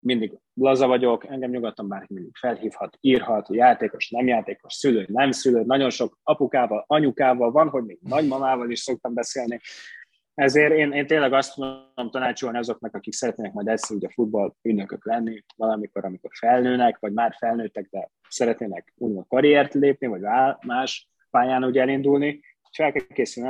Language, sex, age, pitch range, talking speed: Hungarian, male, 20-39, 115-140 Hz, 160 wpm